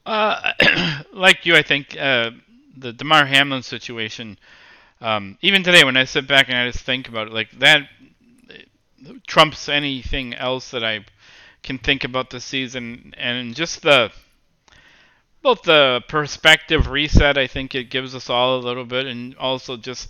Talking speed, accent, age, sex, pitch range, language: 160 wpm, American, 40-59, male, 120-150 Hz, English